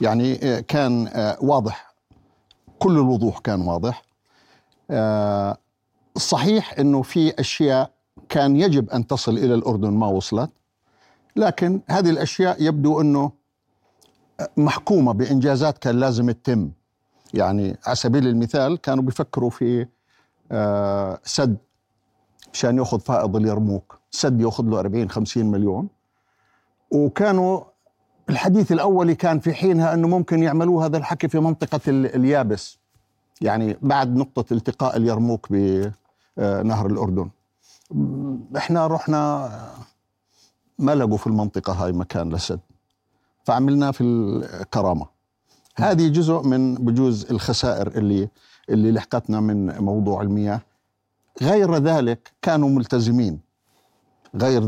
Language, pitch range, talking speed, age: Arabic, 105-140 Hz, 105 wpm, 50-69